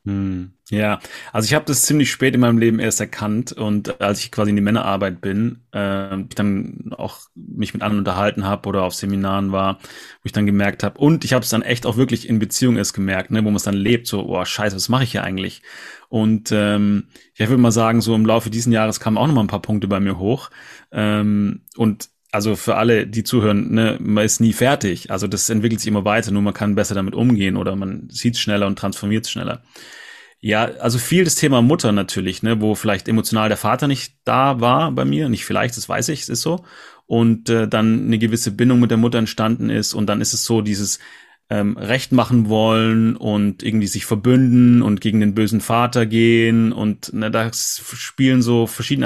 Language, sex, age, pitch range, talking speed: German, male, 30-49, 105-120 Hz, 220 wpm